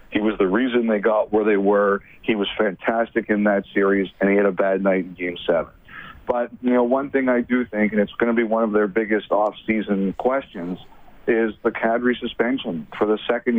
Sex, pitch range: male, 105-115 Hz